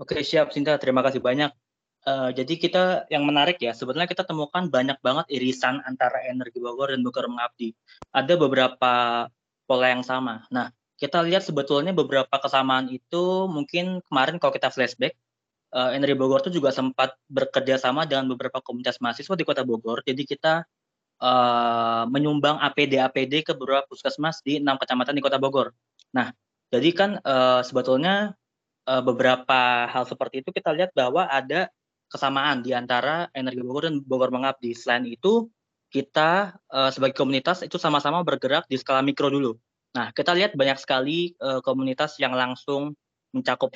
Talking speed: 150 wpm